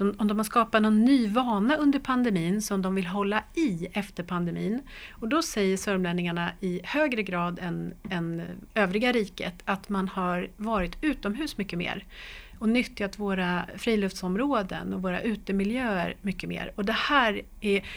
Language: Swedish